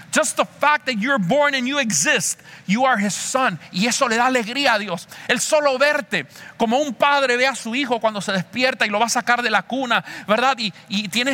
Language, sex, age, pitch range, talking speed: English, male, 40-59, 175-250 Hz, 240 wpm